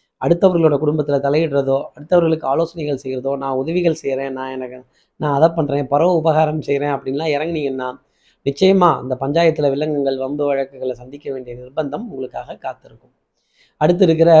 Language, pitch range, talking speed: Tamil, 145-185 Hz, 130 wpm